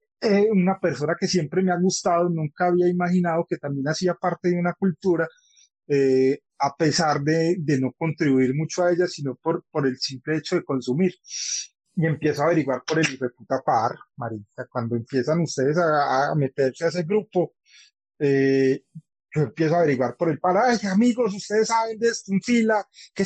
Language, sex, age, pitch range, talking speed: Spanish, male, 30-49, 140-185 Hz, 180 wpm